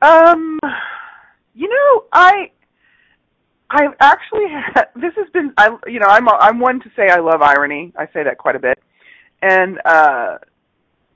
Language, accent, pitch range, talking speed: English, American, 170-280 Hz, 160 wpm